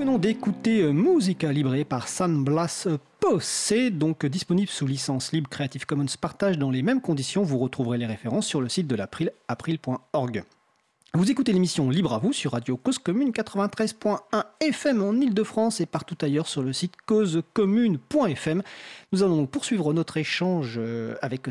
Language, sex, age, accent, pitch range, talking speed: French, male, 40-59, French, 140-220 Hz, 160 wpm